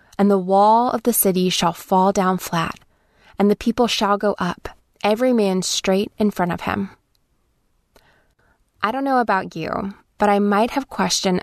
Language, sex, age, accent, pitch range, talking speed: English, female, 20-39, American, 185-225 Hz, 175 wpm